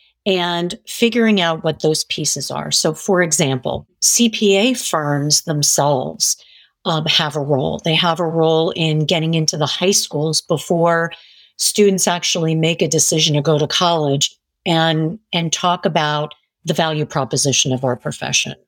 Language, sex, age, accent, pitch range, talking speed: English, female, 50-69, American, 150-180 Hz, 150 wpm